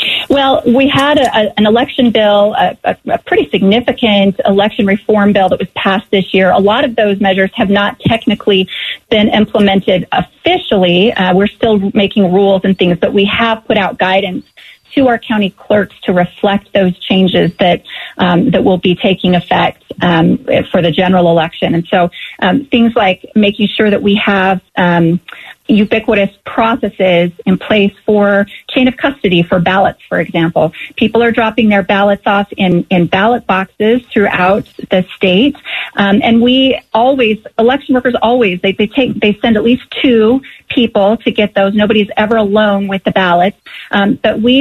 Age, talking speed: 30-49, 175 wpm